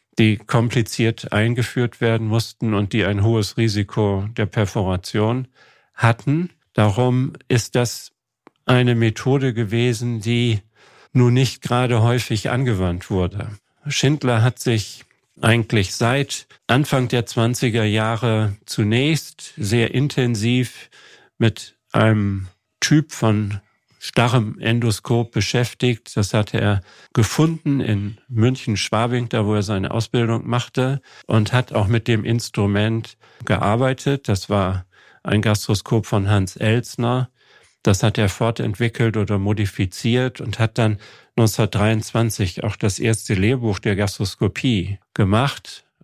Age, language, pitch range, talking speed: 50-69, German, 105-125 Hz, 115 wpm